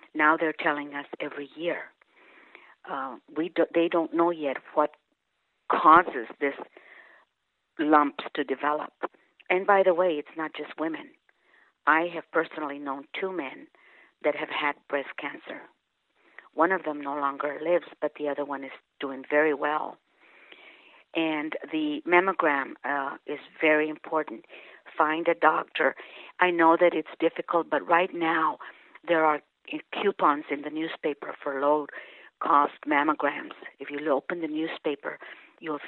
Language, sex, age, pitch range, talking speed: English, female, 60-79, 145-170 Hz, 140 wpm